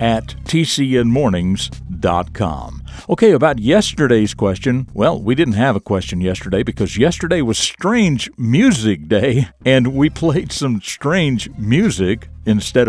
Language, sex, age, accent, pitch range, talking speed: English, male, 60-79, American, 100-140 Hz, 120 wpm